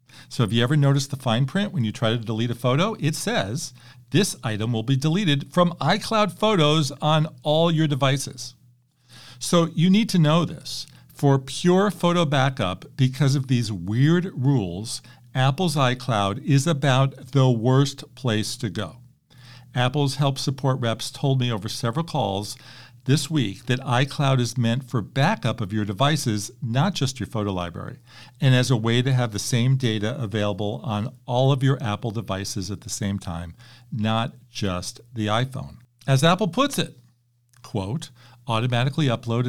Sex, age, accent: male, 50-69, American